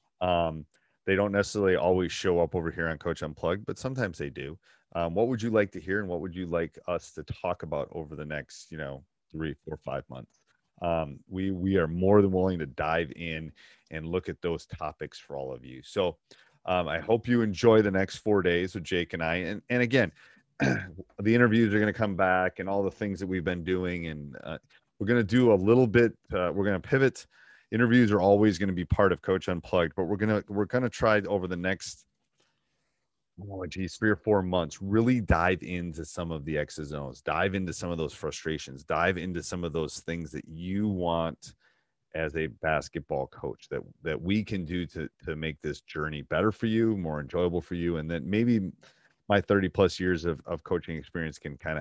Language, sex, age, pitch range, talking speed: English, male, 30-49, 80-100 Hz, 220 wpm